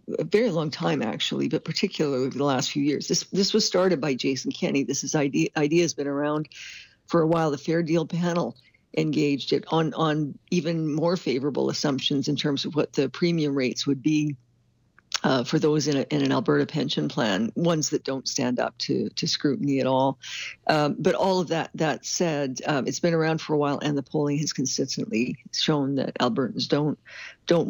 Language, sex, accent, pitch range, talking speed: English, female, American, 140-165 Hz, 200 wpm